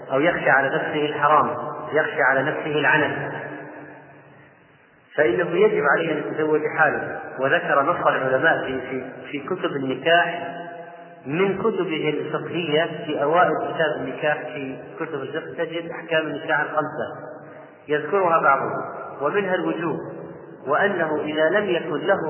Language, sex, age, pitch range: Arabic, male, 40-59, 150-170 Hz